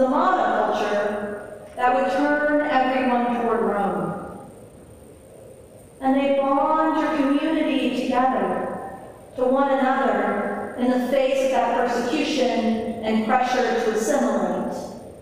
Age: 40-59